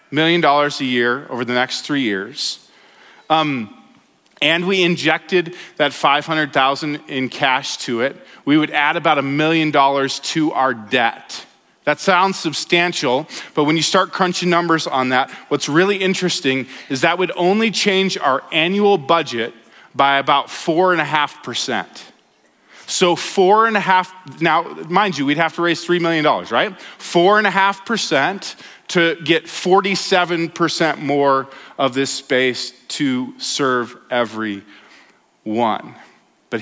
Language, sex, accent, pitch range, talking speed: English, male, American, 135-180 Hz, 150 wpm